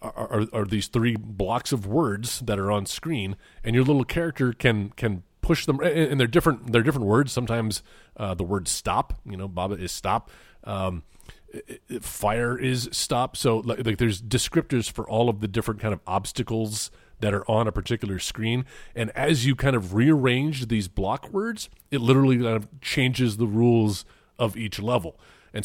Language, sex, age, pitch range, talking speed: English, male, 30-49, 100-125 Hz, 190 wpm